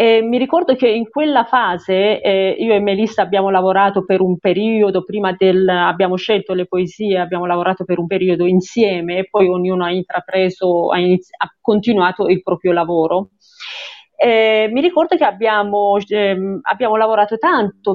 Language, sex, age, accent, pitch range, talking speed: Italian, female, 40-59, native, 190-265 Hz, 160 wpm